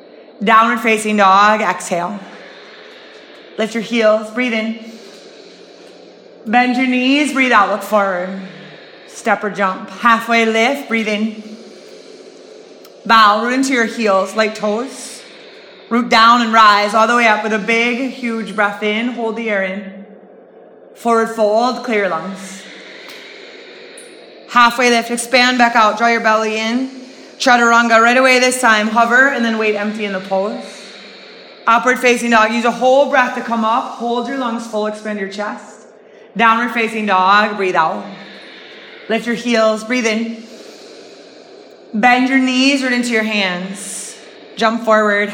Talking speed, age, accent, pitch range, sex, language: 145 wpm, 30-49, American, 210-240 Hz, female, English